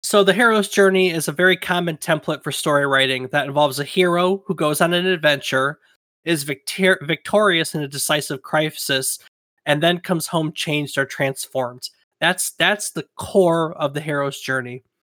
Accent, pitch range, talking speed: American, 140-175 Hz, 165 wpm